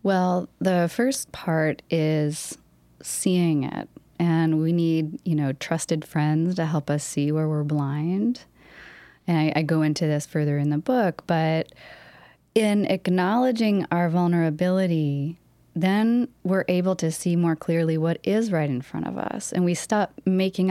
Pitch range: 155-185 Hz